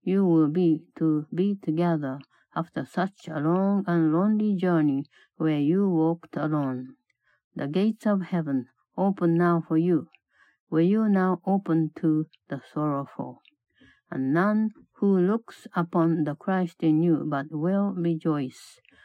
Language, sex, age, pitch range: Japanese, female, 60-79, 150-190 Hz